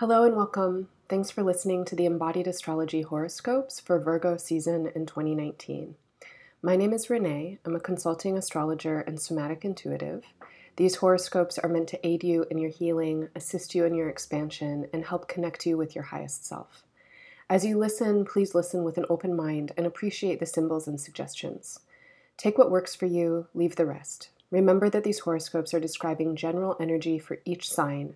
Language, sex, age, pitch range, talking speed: English, female, 30-49, 160-185 Hz, 180 wpm